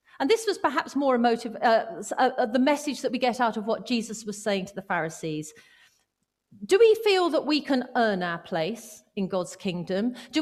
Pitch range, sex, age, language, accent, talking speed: 215-300 Hz, female, 40-59, English, British, 200 wpm